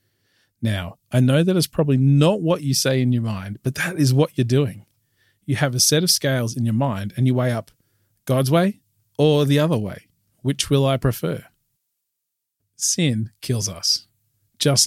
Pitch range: 110-145 Hz